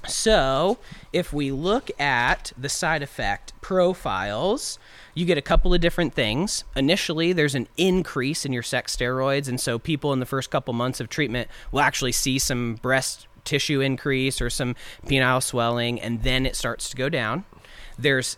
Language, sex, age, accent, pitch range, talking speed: English, male, 30-49, American, 115-140 Hz, 175 wpm